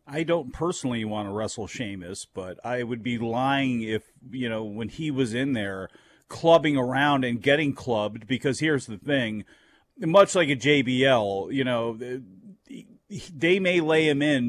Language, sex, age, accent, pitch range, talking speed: English, male, 40-59, American, 125-160 Hz, 165 wpm